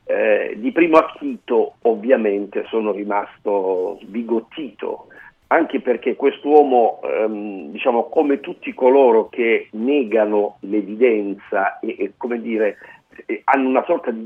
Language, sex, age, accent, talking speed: Italian, male, 50-69, native, 110 wpm